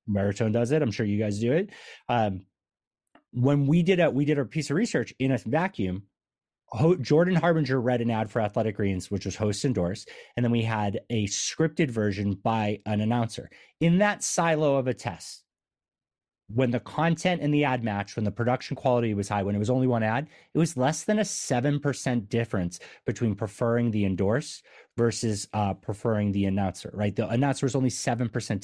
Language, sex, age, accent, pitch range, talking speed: English, male, 30-49, American, 105-145 Hz, 195 wpm